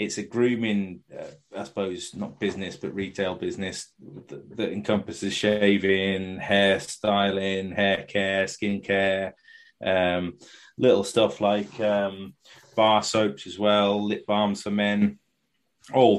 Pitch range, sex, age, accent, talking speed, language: 95-115 Hz, male, 20-39, British, 125 wpm, English